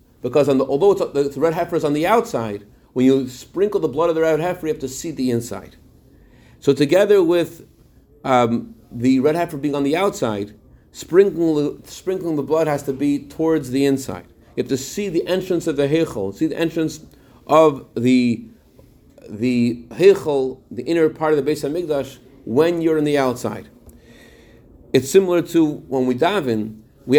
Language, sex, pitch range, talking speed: English, male, 130-165 Hz, 180 wpm